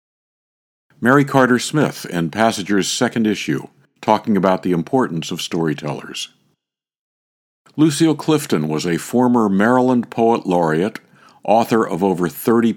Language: English